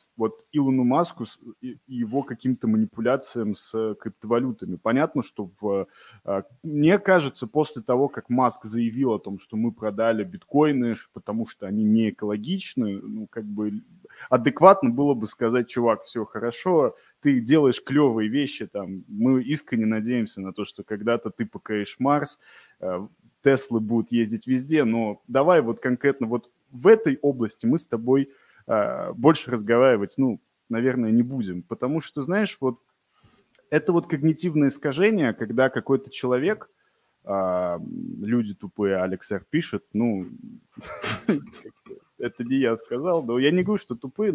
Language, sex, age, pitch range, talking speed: Russian, male, 20-39, 105-135 Hz, 140 wpm